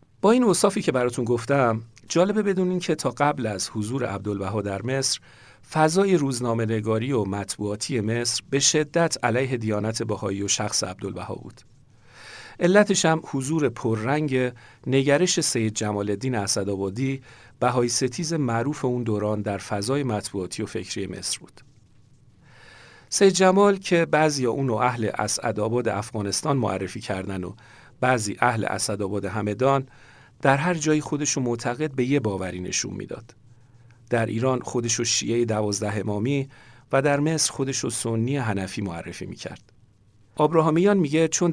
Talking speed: 130 wpm